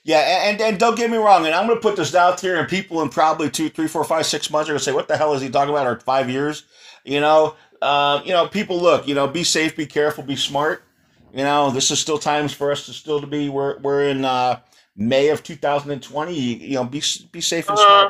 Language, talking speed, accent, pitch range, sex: English, 265 wpm, American, 125-150 Hz, male